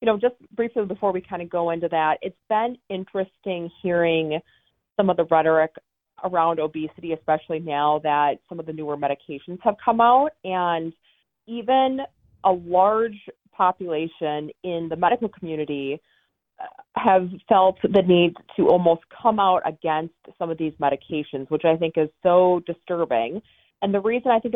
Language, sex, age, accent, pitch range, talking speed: English, female, 30-49, American, 160-200 Hz, 160 wpm